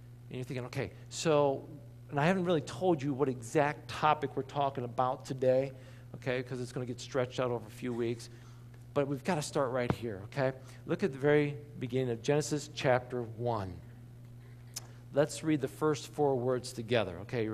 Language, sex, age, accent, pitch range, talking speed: English, male, 50-69, American, 120-165 Hz, 190 wpm